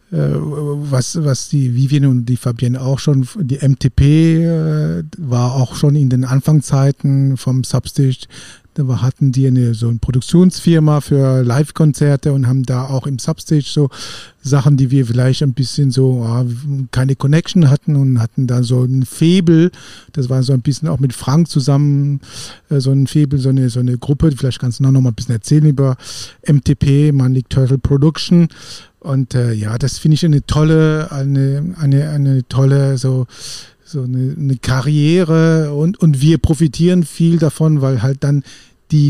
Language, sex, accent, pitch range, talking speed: German, male, German, 130-150 Hz, 170 wpm